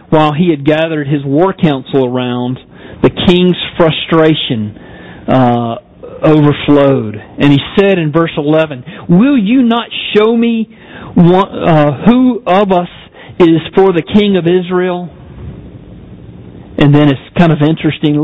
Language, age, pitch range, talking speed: English, 50-69, 135-170 Hz, 130 wpm